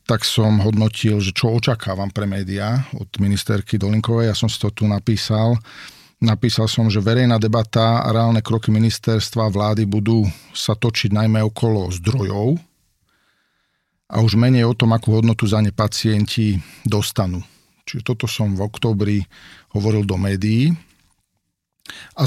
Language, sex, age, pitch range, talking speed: English, male, 50-69, 105-115 Hz, 145 wpm